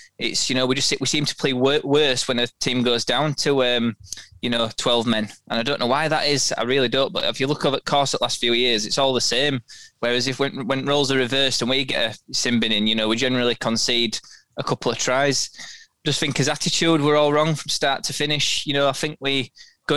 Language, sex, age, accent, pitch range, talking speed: English, male, 20-39, British, 120-140 Hz, 250 wpm